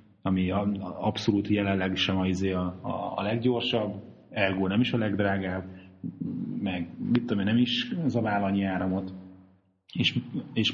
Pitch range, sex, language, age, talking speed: 95-105 Hz, male, Hungarian, 30-49, 145 wpm